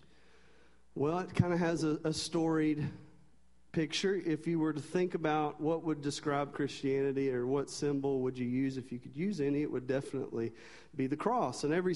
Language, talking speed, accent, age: English, 190 wpm, American, 40-59